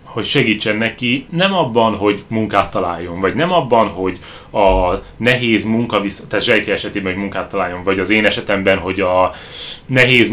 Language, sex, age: Hungarian, male, 30-49